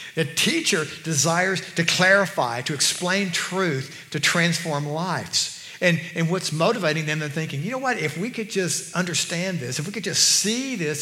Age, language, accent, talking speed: 60-79, English, American, 180 wpm